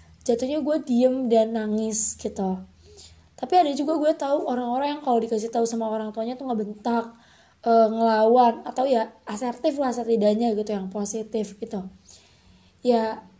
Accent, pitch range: native, 220-260 Hz